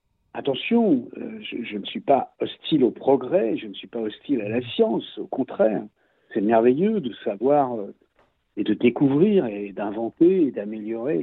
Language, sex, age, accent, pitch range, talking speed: French, male, 60-79, French, 105-145 Hz, 160 wpm